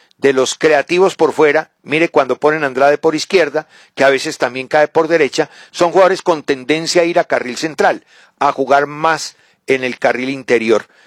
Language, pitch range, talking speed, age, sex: English, 135-185 Hz, 190 wpm, 40-59, male